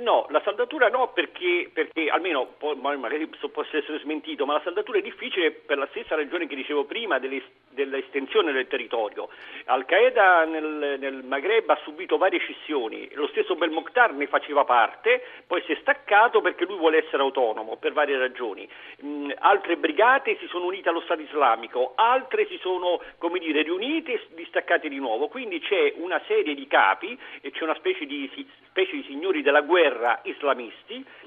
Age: 50-69